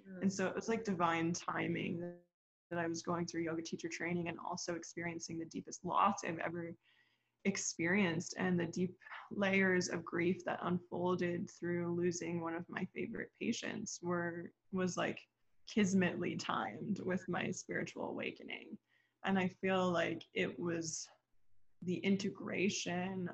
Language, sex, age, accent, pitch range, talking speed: English, female, 20-39, American, 170-190 Hz, 145 wpm